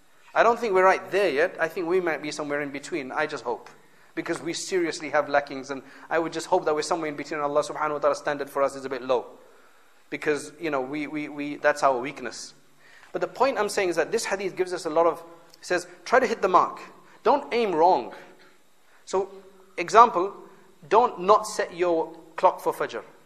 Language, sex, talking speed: English, male, 220 wpm